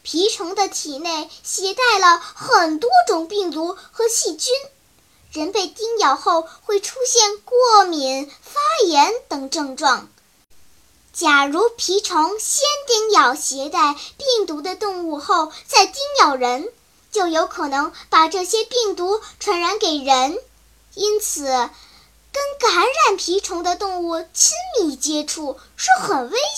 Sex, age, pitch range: male, 10-29, 310-430 Hz